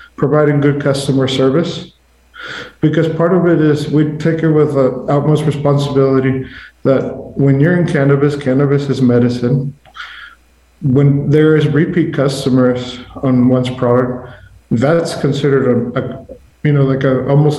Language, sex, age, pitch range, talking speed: English, male, 50-69, 130-145 Hz, 140 wpm